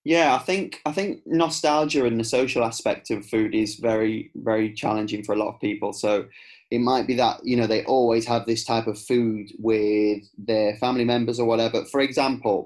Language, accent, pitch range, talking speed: English, British, 110-145 Hz, 205 wpm